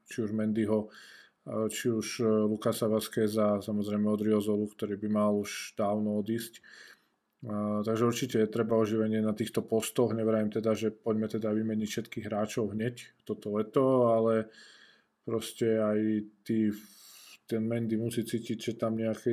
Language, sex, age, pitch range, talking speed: Slovak, male, 20-39, 105-115 Hz, 145 wpm